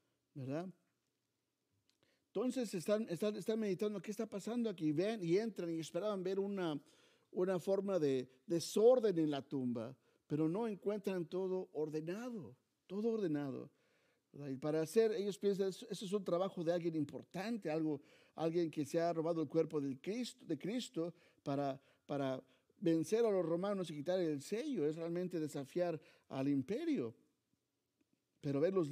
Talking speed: 155 wpm